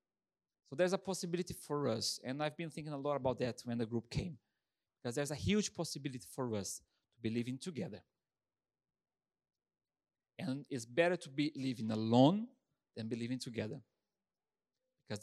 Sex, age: male, 40-59